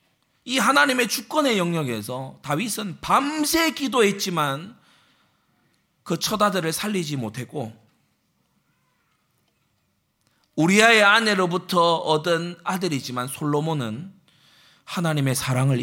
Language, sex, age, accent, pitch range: Korean, male, 40-59, native, 130-195 Hz